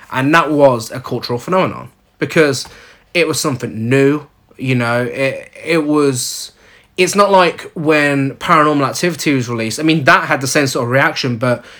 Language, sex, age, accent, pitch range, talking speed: English, male, 20-39, British, 125-155 Hz, 175 wpm